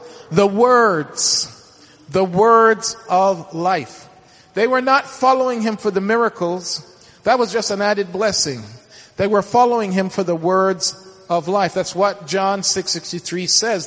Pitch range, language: 170-220 Hz, English